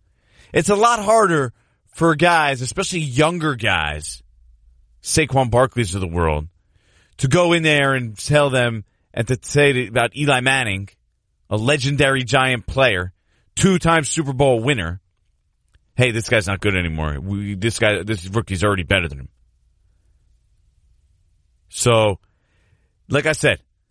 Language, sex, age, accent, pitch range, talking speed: English, male, 30-49, American, 90-145 Hz, 135 wpm